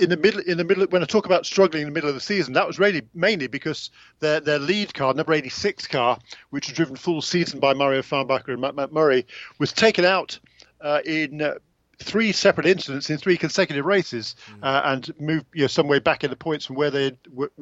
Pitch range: 140-170 Hz